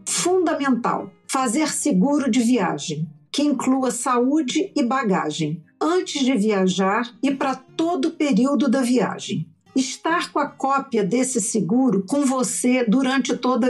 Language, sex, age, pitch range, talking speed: Portuguese, female, 50-69, 210-265 Hz, 130 wpm